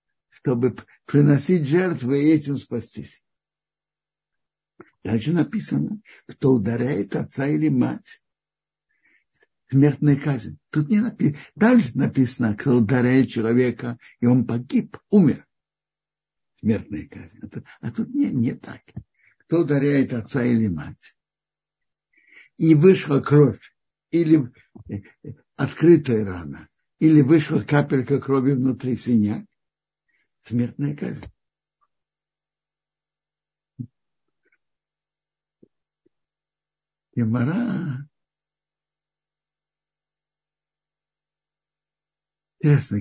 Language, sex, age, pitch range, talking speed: Russian, male, 60-79, 120-155 Hz, 75 wpm